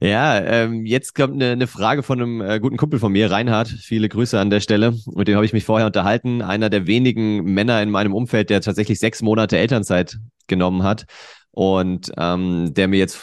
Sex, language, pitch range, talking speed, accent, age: male, German, 95-115 Hz, 190 wpm, German, 30-49